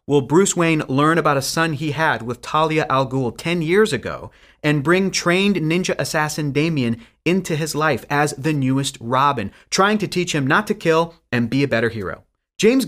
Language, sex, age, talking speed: English, male, 30-49, 195 wpm